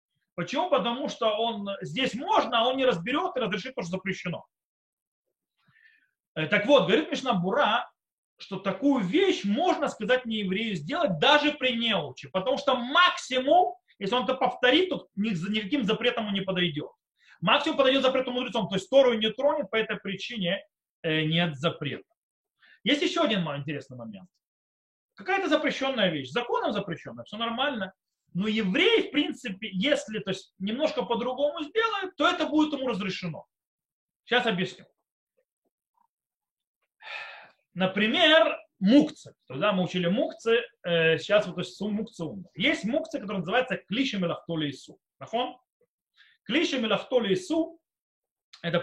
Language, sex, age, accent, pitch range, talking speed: Russian, male, 30-49, native, 185-285 Hz, 130 wpm